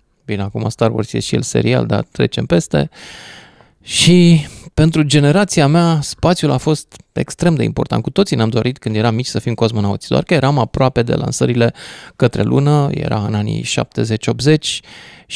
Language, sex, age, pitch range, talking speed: Romanian, male, 20-39, 110-140 Hz, 170 wpm